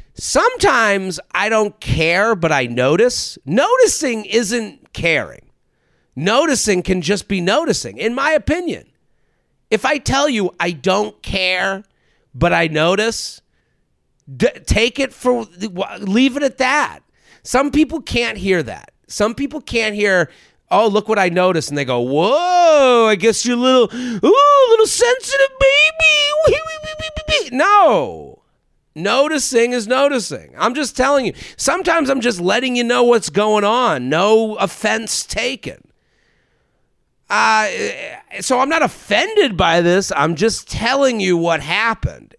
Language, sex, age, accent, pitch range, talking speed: English, male, 40-59, American, 170-260 Hz, 135 wpm